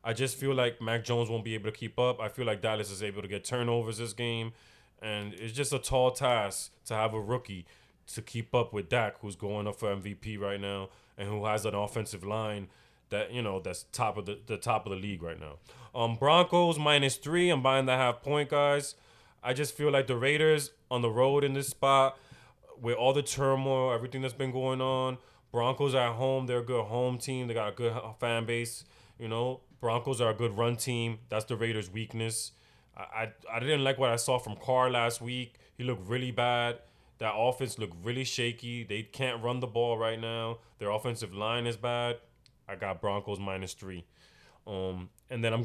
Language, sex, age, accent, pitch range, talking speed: English, male, 20-39, American, 110-130 Hz, 215 wpm